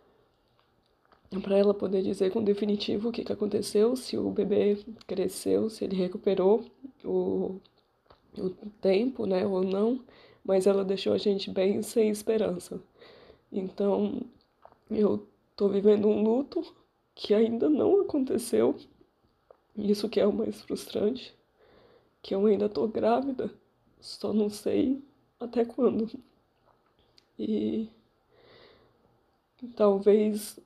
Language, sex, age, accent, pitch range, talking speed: Portuguese, female, 20-39, Brazilian, 200-235 Hz, 115 wpm